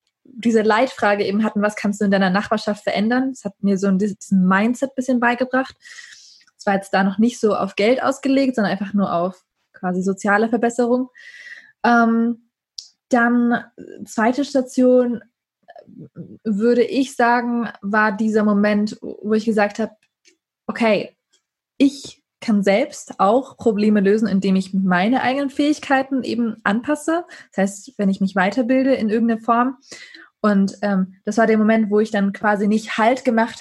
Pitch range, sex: 200-240 Hz, female